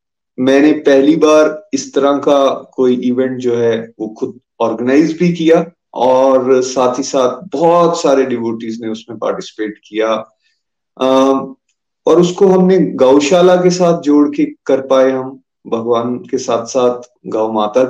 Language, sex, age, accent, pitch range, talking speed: Hindi, male, 30-49, native, 120-160 Hz, 145 wpm